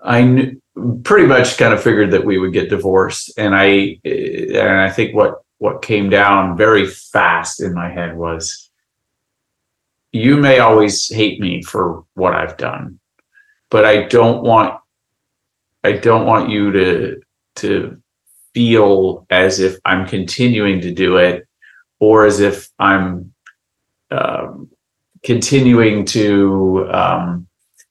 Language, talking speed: English, 130 wpm